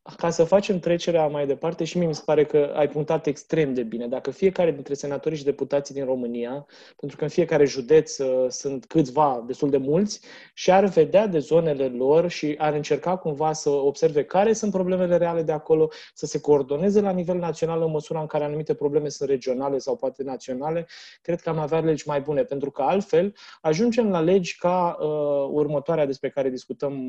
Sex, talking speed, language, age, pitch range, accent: male, 195 wpm, Romanian, 20-39, 140-170 Hz, native